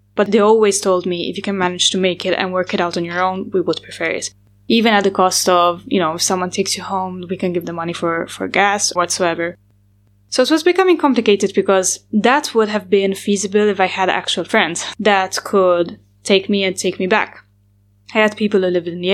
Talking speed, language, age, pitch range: 235 wpm, English, 10-29, 175-210 Hz